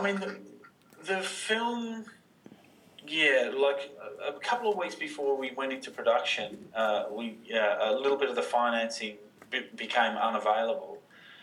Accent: Australian